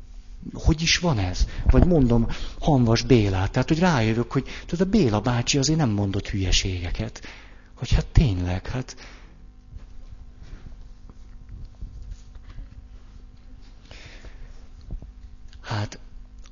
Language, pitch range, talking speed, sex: Hungarian, 90-120 Hz, 90 wpm, male